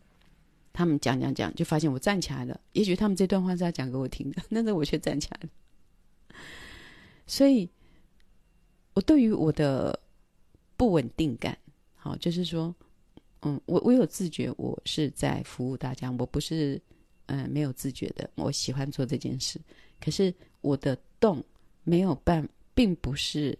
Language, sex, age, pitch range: Chinese, female, 30-49, 140-180 Hz